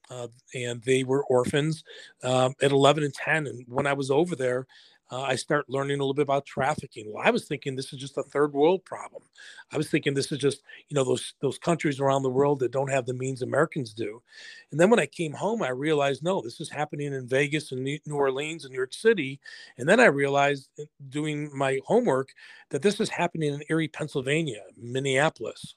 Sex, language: male, English